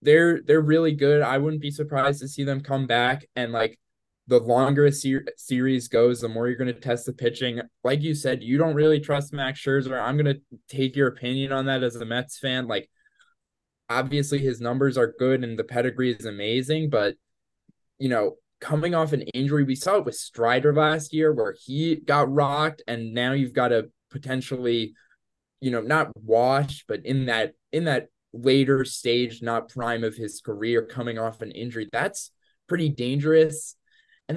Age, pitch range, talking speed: 20-39, 120-150 Hz, 190 wpm